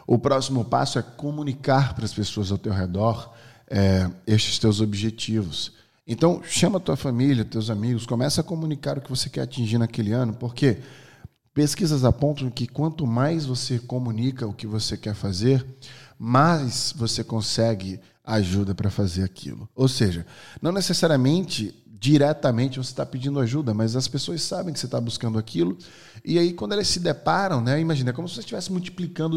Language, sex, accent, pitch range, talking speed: Portuguese, male, Brazilian, 110-135 Hz, 170 wpm